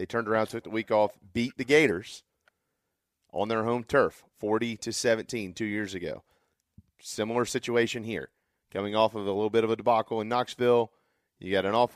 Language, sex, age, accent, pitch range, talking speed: English, male, 40-59, American, 95-115 Hz, 180 wpm